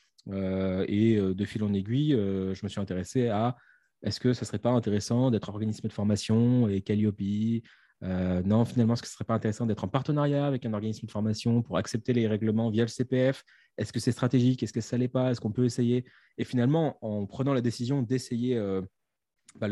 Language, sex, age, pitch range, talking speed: French, male, 20-39, 105-135 Hz, 205 wpm